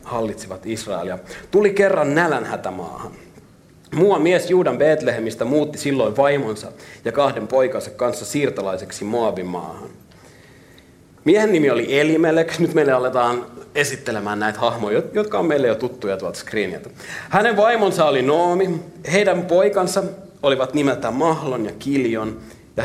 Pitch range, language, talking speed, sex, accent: 120-175 Hz, Finnish, 130 wpm, male, native